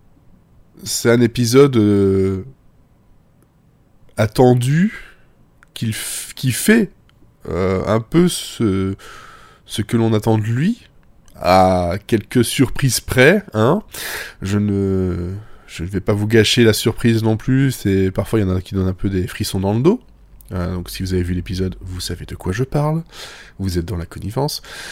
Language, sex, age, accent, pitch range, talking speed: French, male, 20-39, French, 95-120 Hz, 165 wpm